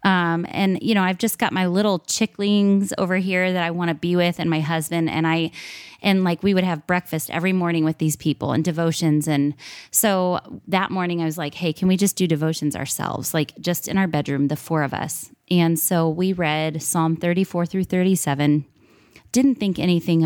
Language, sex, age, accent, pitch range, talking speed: English, female, 20-39, American, 160-185 Hz, 205 wpm